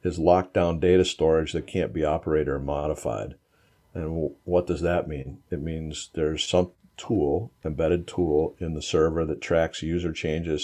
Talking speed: 170 wpm